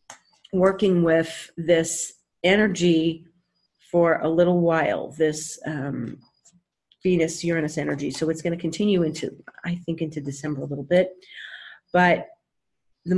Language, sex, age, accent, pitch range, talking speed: English, female, 40-59, American, 155-185 Hz, 130 wpm